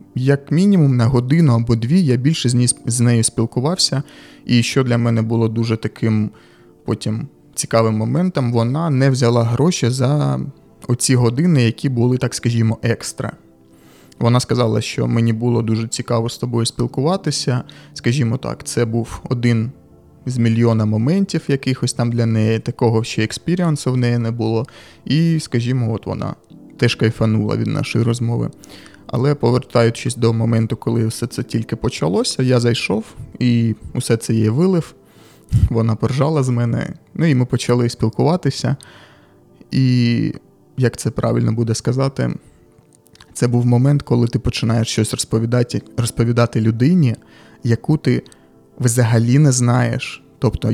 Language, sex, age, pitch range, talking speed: Ukrainian, male, 20-39, 115-130 Hz, 140 wpm